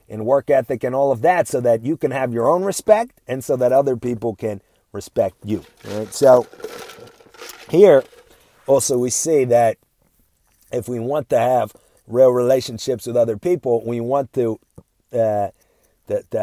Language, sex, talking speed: English, male, 170 wpm